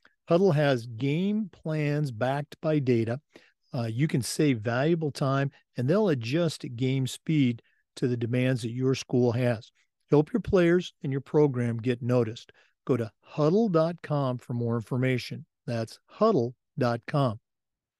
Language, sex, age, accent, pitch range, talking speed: English, male, 50-69, American, 125-155 Hz, 135 wpm